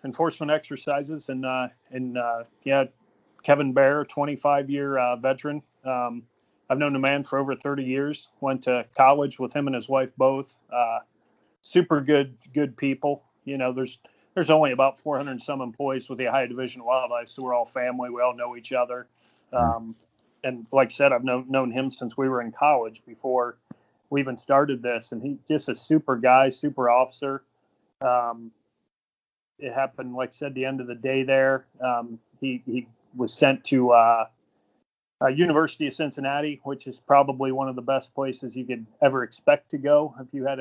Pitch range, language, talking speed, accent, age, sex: 125-135 Hz, English, 190 wpm, American, 30-49, male